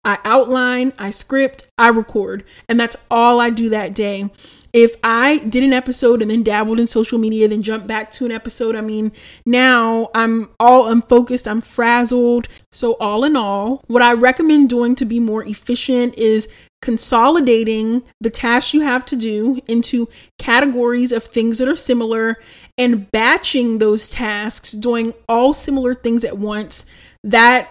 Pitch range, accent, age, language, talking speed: 220-250 Hz, American, 30-49, English, 165 wpm